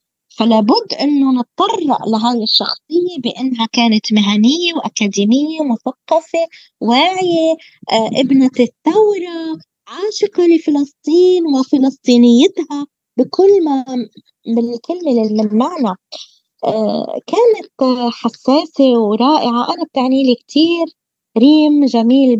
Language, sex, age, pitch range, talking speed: Arabic, female, 20-39, 235-320 Hz, 80 wpm